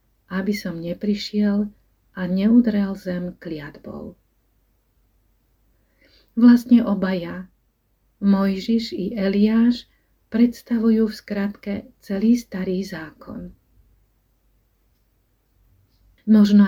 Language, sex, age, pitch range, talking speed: Slovak, female, 40-59, 170-210 Hz, 70 wpm